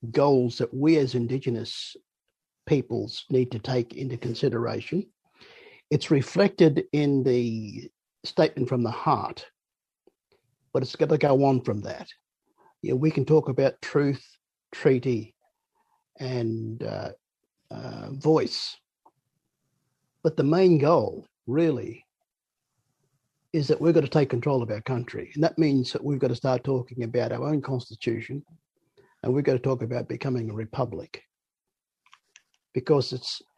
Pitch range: 125-160 Hz